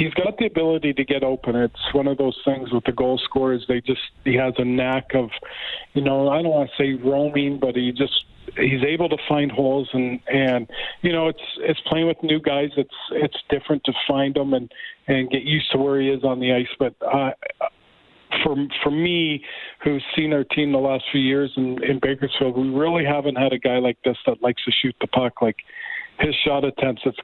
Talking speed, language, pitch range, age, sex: 220 wpm, English, 130-150 Hz, 40-59, male